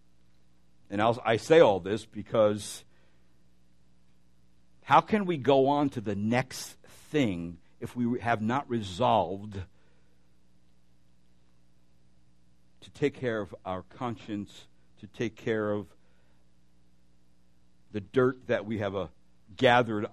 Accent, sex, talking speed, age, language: American, male, 110 wpm, 60-79, English